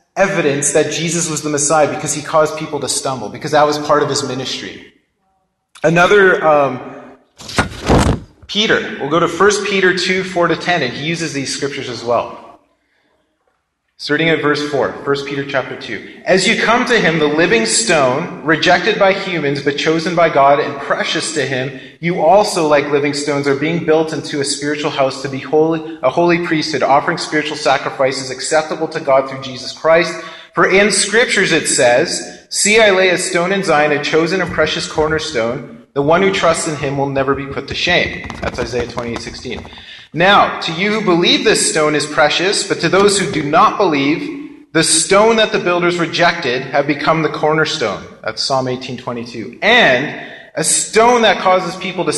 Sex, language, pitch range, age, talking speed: male, English, 140-170 Hz, 30-49, 185 wpm